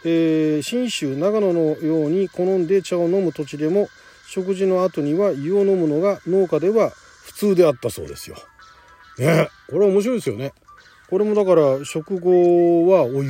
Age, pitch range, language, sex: 40-59, 150-225 Hz, Japanese, male